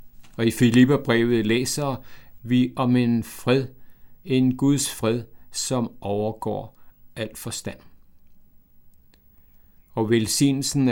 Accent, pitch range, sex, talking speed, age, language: native, 105-140 Hz, male, 95 wpm, 60-79, Danish